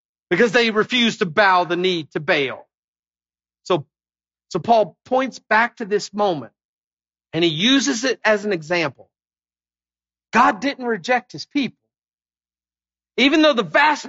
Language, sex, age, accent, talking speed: English, male, 40-59, American, 140 wpm